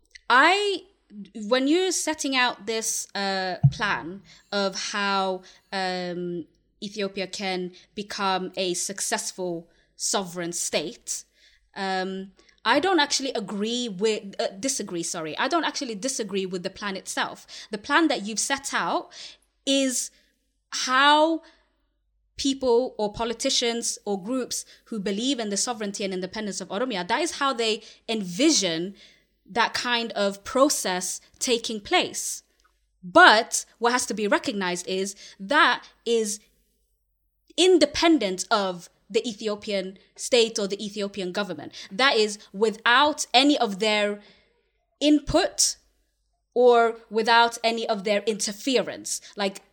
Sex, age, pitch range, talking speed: female, 20-39, 195-255 Hz, 120 wpm